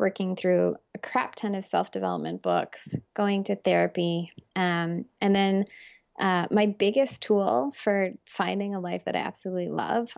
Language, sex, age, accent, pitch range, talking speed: English, female, 20-39, American, 180-205 Hz, 160 wpm